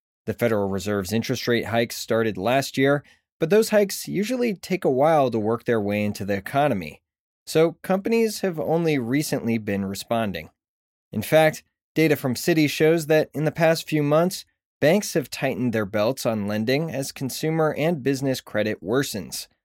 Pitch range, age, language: 110-155 Hz, 20-39, English